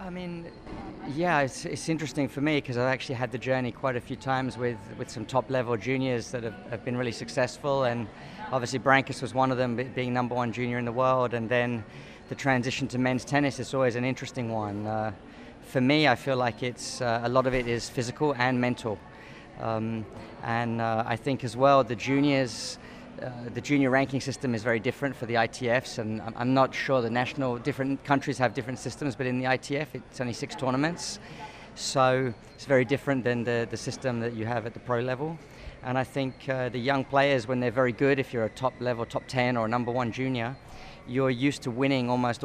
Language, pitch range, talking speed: English, 120-135 Hz, 215 wpm